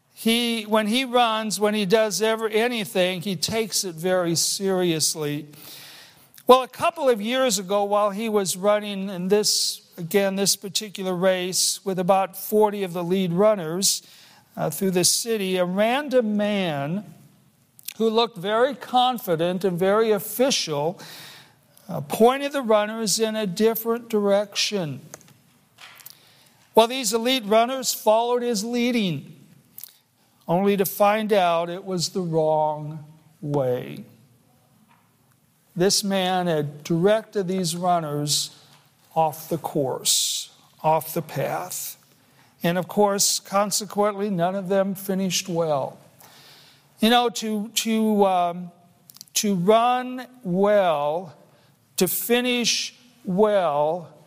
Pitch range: 170-220 Hz